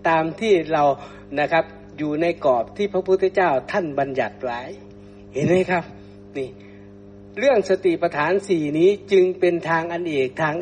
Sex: male